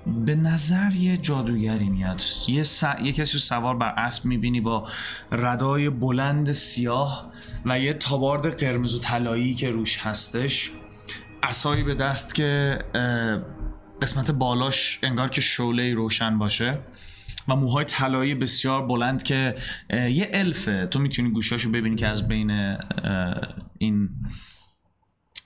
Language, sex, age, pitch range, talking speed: Persian, male, 20-39, 105-140 Hz, 125 wpm